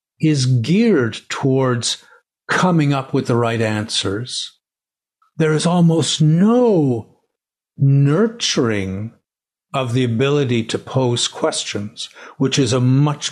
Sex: male